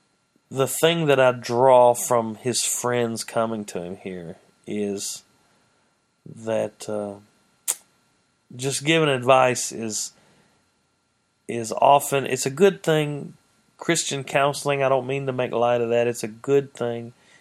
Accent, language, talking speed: American, English, 135 wpm